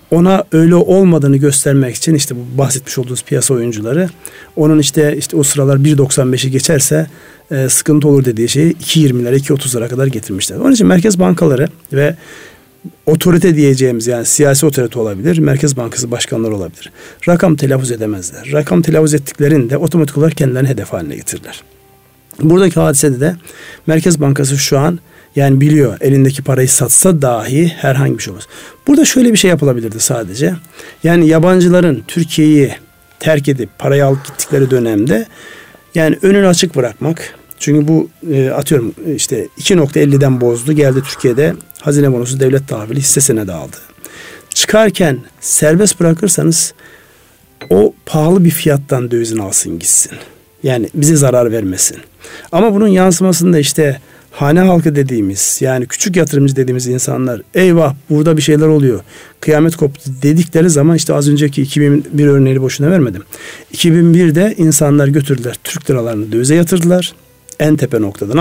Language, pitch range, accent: Turkish, 130-165 Hz, native